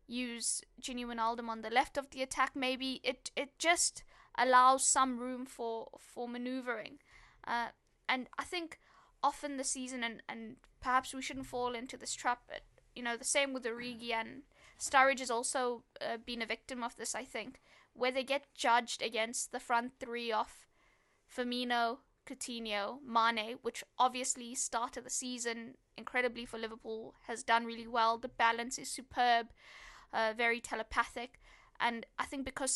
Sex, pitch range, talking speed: female, 230-265 Hz, 165 wpm